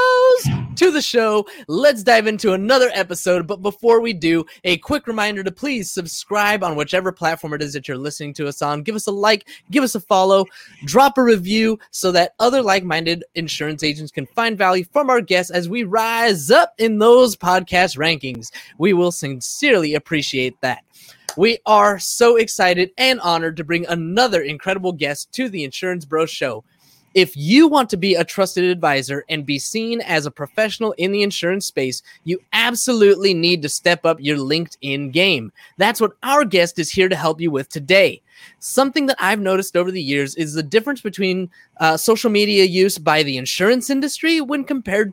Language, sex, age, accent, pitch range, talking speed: English, male, 20-39, American, 160-225 Hz, 185 wpm